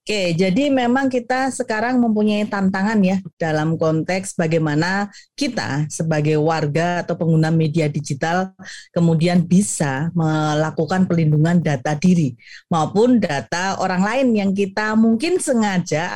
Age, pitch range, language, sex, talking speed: 30-49, 170-210 Hz, Indonesian, female, 120 wpm